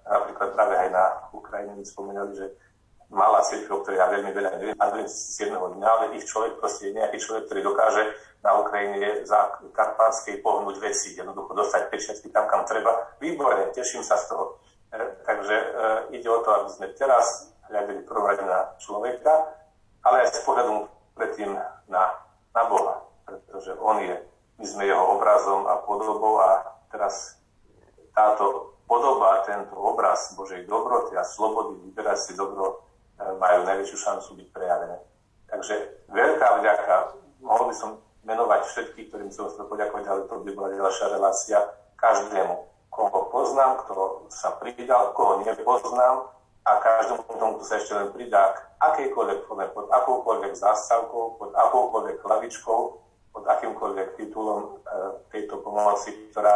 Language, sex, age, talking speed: Slovak, male, 40-59, 145 wpm